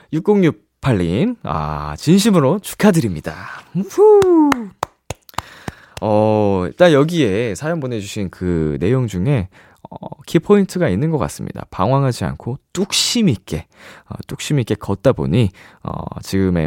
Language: Korean